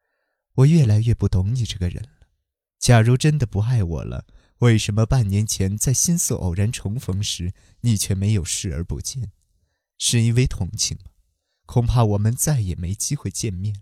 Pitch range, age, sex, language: 95-130 Hz, 20-39, male, Chinese